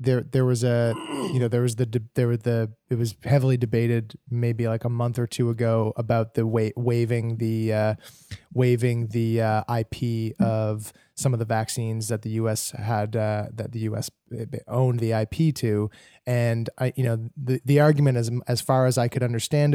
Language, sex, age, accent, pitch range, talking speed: English, male, 20-39, American, 115-130 Hz, 200 wpm